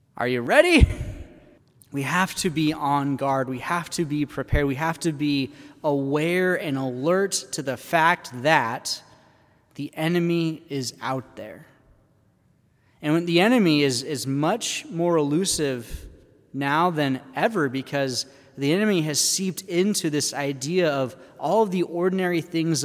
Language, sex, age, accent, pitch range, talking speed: English, male, 20-39, American, 135-165 Hz, 140 wpm